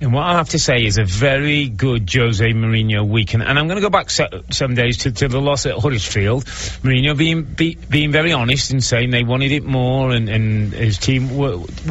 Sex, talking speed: male, 220 wpm